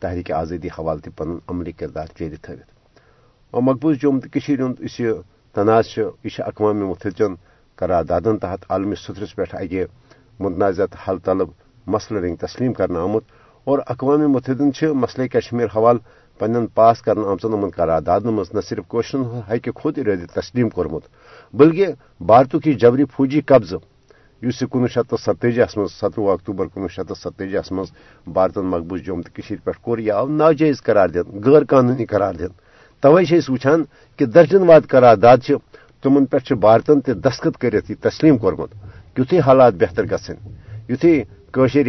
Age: 60-79